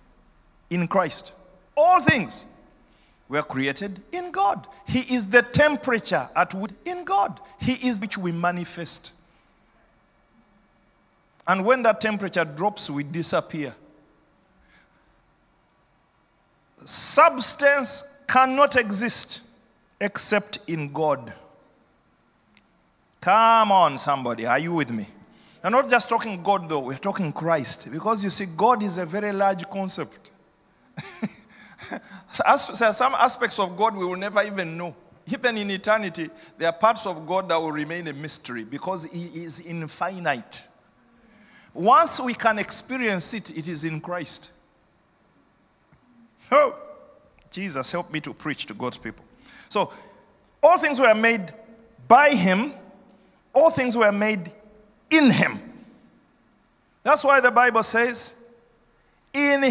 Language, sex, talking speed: English, male, 120 wpm